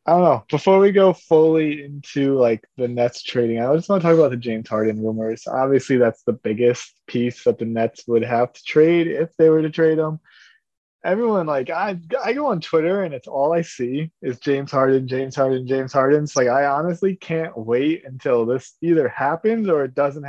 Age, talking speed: 20-39, 215 wpm